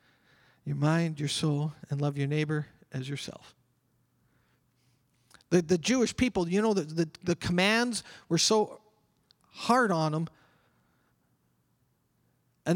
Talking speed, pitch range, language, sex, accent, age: 120 wpm, 150-200 Hz, English, male, American, 40-59